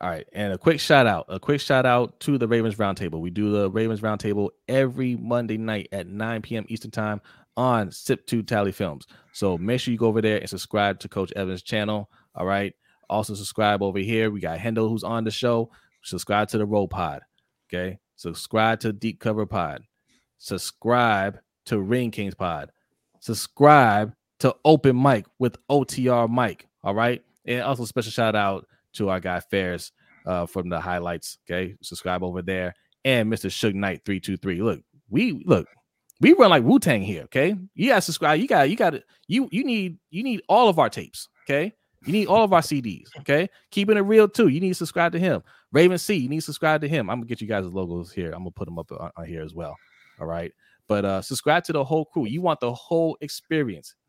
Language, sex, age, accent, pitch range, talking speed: English, male, 20-39, American, 100-145 Hz, 205 wpm